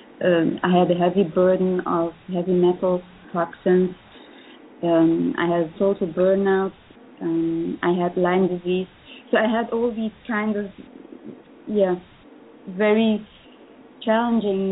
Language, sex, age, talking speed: English, female, 20-39, 120 wpm